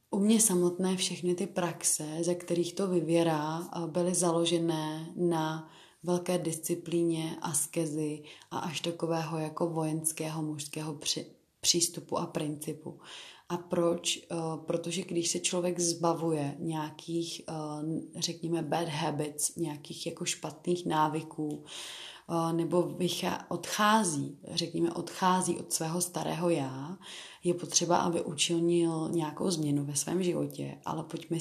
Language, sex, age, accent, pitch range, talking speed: Czech, female, 30-49, native, 160-175 Hz, 115 wpm